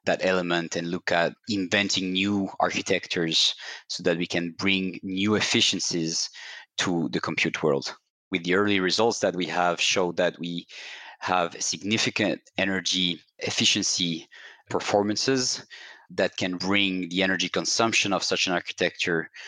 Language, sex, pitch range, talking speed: English, male, 85-100 Hz, 135 wpm